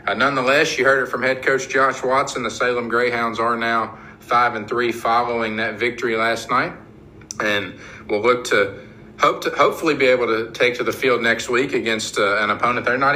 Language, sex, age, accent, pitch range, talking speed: English, male, 50-69, American, 110-135 Hz, 195 wpm